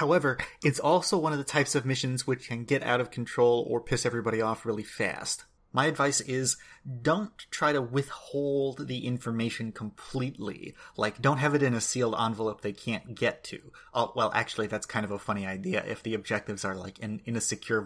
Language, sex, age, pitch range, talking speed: English, male, 30-49, 110-140 Hz, 205 wpm